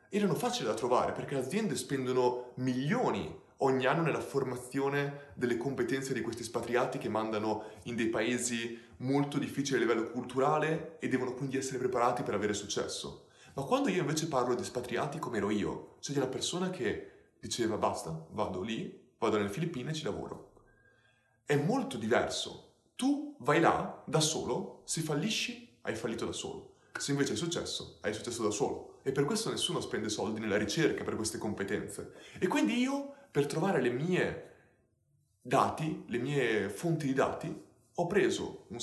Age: 20-39